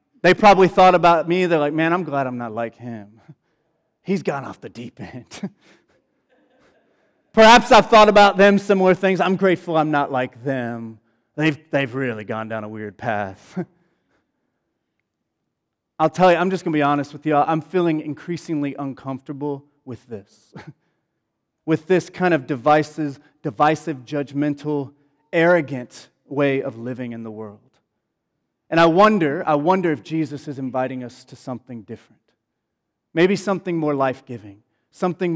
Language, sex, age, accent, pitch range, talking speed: English, male, 30-49, American, 130-175 Hz, 155 wpm